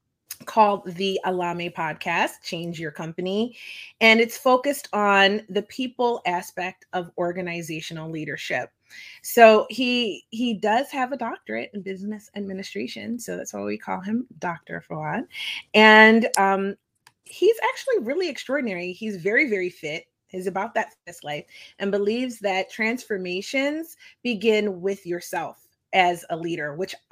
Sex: female